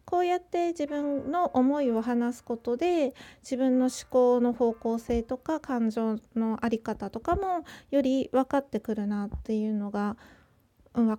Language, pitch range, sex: Japanese, 225-295 Hz, female